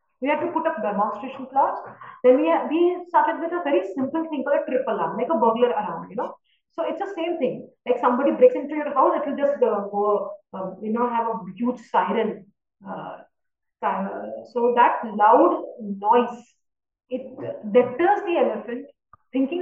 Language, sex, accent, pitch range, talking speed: English, female, Indian, 225-300 Hz, 185 wpm